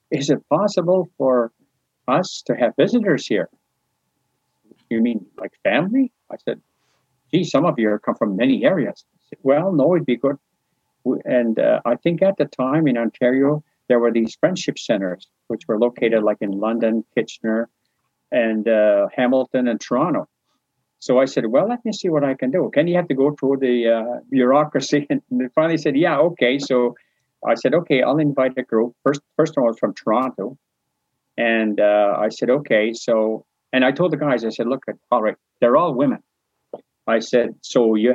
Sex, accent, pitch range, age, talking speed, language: male, American, 115-150 Hz, 50-69, 185 wpm, English